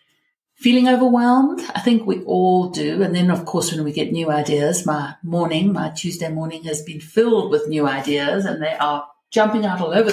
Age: 60-79